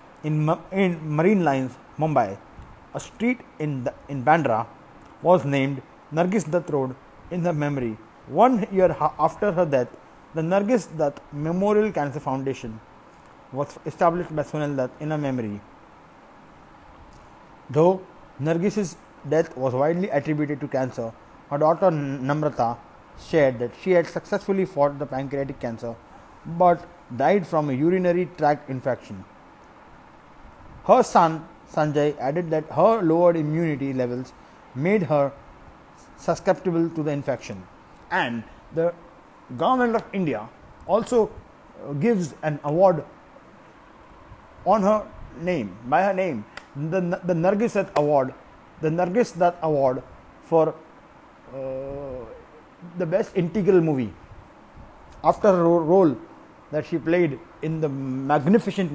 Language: Hindi